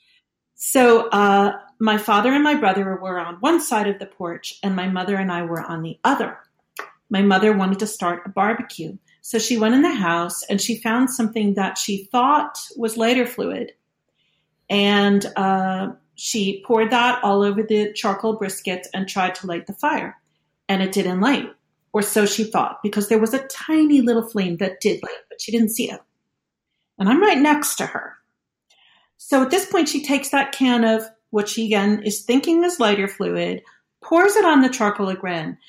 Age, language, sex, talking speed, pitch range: 40-59, English, female, 190 wpm, 195-250 Hz